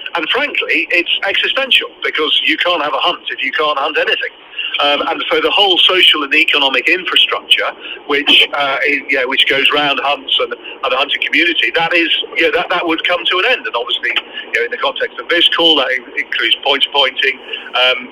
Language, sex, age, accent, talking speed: English, male, 40-59, British, 205 wpm